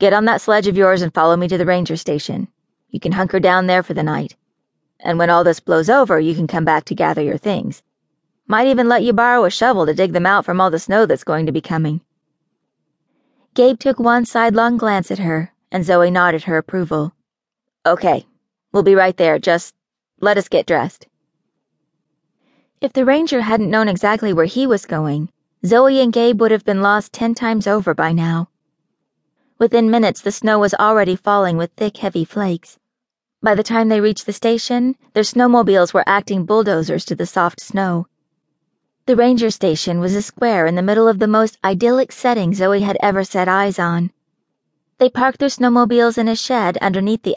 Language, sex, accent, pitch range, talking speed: English, female, American, 175-230 Hz, 195 wpm